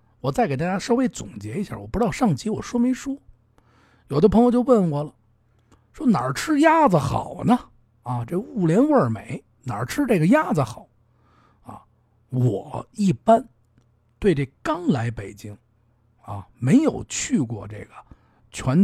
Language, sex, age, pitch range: Chinese, male, 50-69, 115-185 Hz